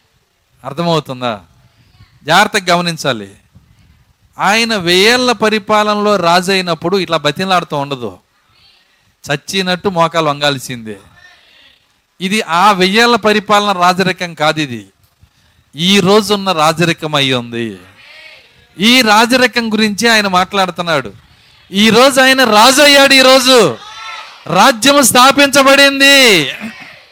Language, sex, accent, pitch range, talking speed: Telugu, male, native, 145-225 Hz, 85 wpm